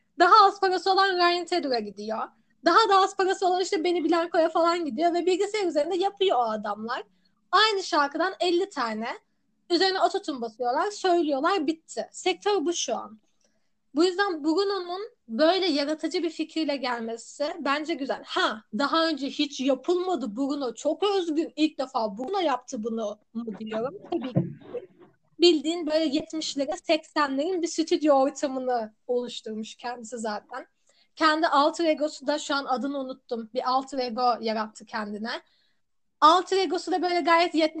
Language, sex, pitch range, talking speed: Turkish, female, 250-345 Hz, 140 wpm